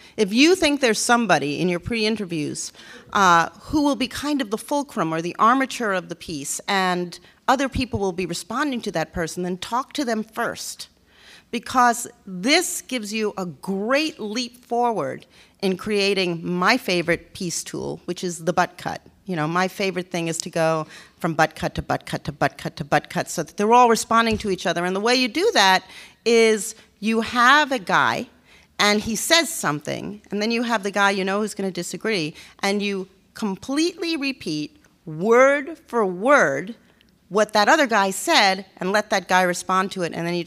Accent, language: American, English